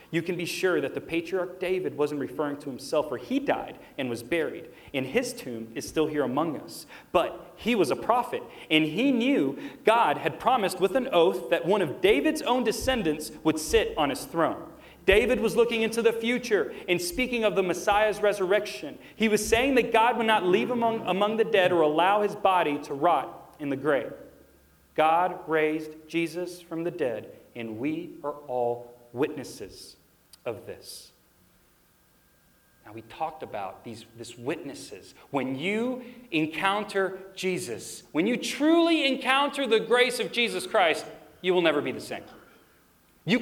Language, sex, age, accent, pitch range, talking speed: English, male, 40-59, American, 170-245 Hz, 170 wpm